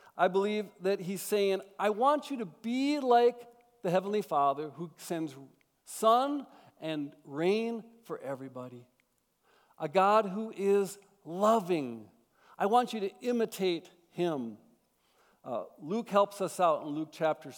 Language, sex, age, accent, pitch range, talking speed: English, male, 60-79, American, 145-205 Hz, 135 wpm